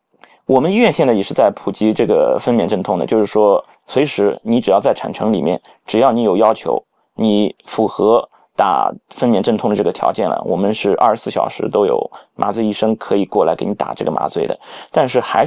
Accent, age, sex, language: native, 20-39, male, Chinese